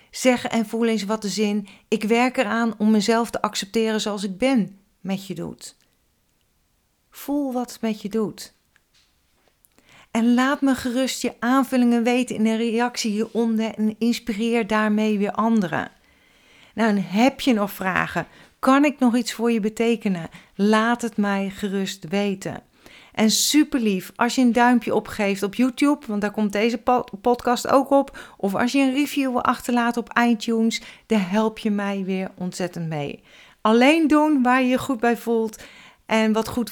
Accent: Dutch